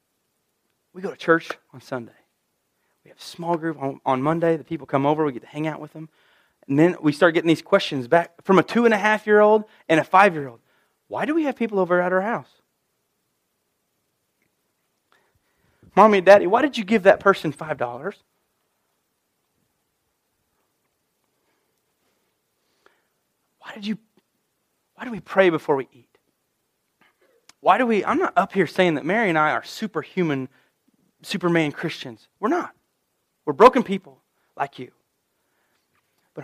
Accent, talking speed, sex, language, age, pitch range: American, 165 wpm, male, English, 30-49, 150-195 Hz